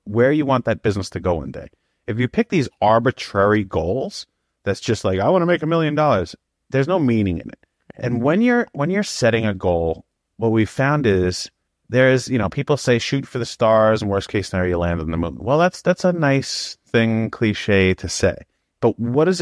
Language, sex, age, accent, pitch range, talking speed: English, male, 30-49, American, 95-135 Hz, 225 wpm